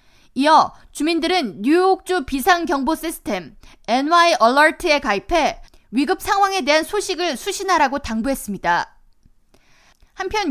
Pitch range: 260-365 Hz